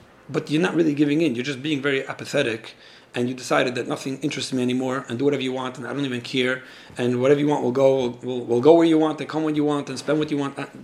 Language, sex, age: English, male, 40-59